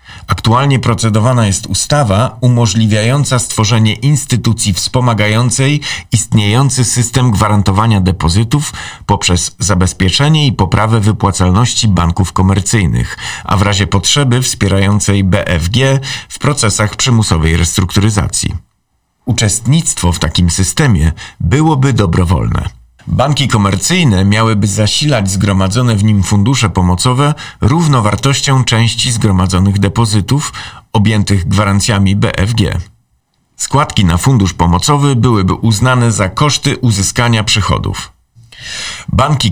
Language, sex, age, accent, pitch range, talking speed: Polish, male, 40-59, native, 95-125 Hz, 95 wpm